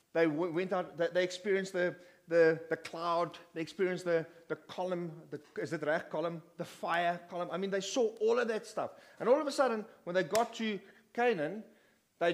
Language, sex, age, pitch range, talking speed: English, male, 30-49, 170-230 Hz, 205 wpm